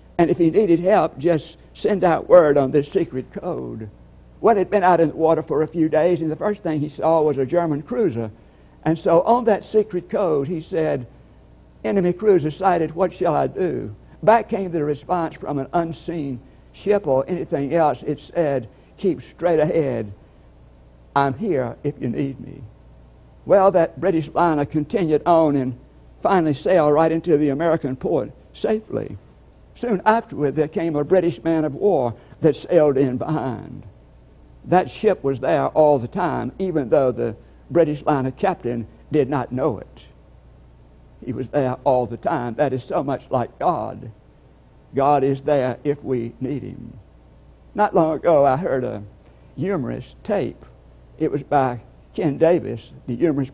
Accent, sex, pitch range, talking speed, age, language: American, male, 115-165 Hz, 170 wpm, 60-79, English